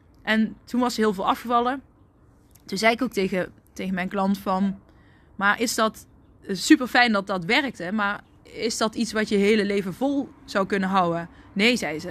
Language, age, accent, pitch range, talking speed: Dutch, 20-39, Dutch, 195-235 Hz, 190 wpm